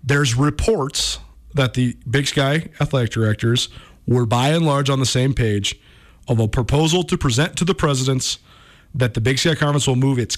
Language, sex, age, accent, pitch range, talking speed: English, male, 40-59, American, 120-155 Hz, 185 wpm